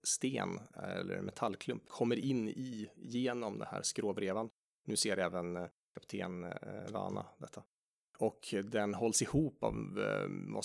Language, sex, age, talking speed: Swedish, male, 30-49, 130 wpm